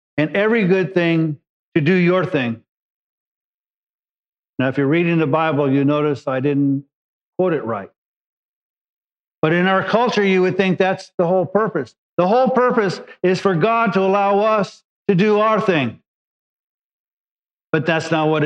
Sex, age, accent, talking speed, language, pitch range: male, 50-69, American, 160 wpm, English, 155-200 Hz